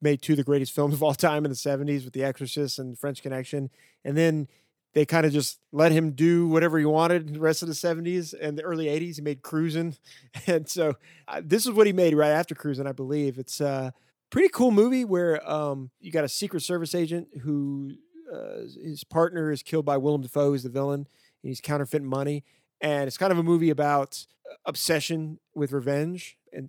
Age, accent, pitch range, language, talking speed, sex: 30-49, American, 140-170 Hz, English, 215 wpm, male